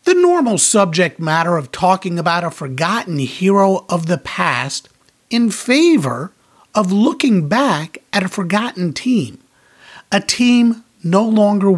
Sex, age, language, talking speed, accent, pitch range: male, 50-69, English, 130 wpm, American, 170-240 Hz